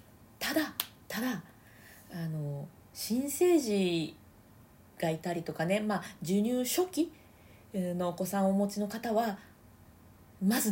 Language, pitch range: Japanese, 170-255 Hz